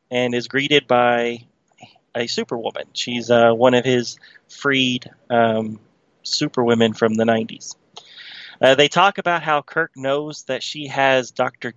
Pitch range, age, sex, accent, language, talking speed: 125-155 Hz, 30-49, male, American, English, 145 wpm